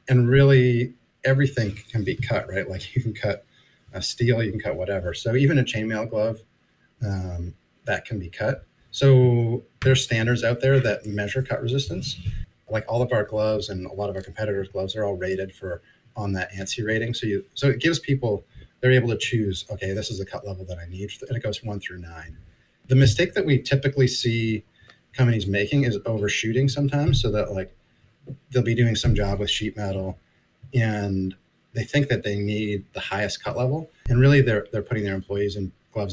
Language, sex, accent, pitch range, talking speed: English, male, American, 100-125 Hz, 205 wpm